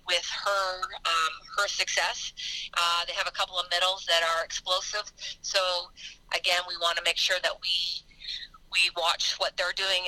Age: 40-59